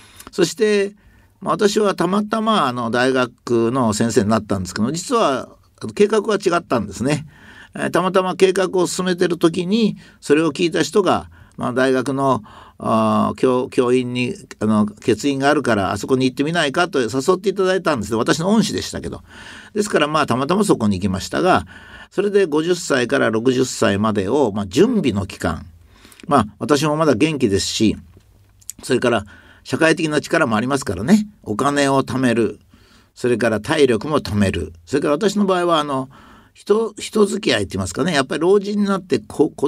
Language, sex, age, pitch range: Japanese, male, 50-69, 105-175 Hz